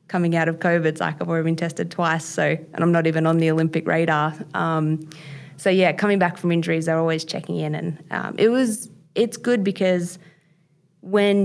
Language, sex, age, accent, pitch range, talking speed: English, female, 20-39, Australian, 160-180 Hz, 205 wpm